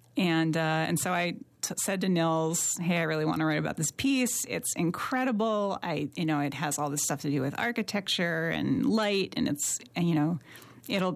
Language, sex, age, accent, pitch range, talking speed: English, female, 30-49, American, 155-195 Hz, 210 wpm